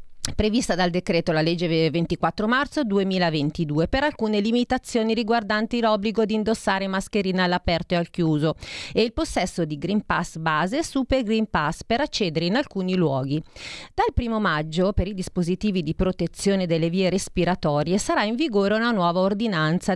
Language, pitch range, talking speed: Italian, 165-220 Hz, 155 wpm